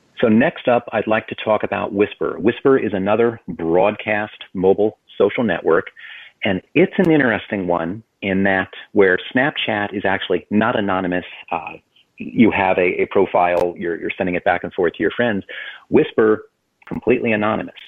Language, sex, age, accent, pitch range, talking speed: English, male, 40-59, American, 95-120 Hz, 160 wpm